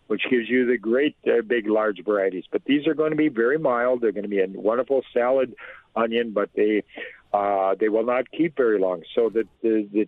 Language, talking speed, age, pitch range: English, 225 wpm, 50-69, 110-145 Hz